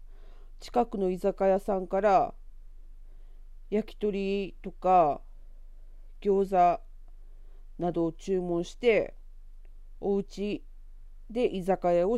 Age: 40-59